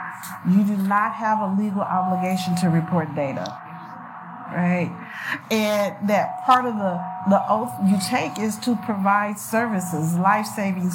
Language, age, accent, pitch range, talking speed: English, 50-69, American, 180-220 Hz, 135 wpm